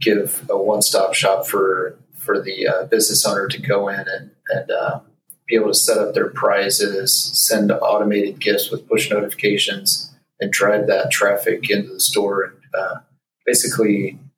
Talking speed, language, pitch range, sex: 165 wpm, English, 105-155 Hz, male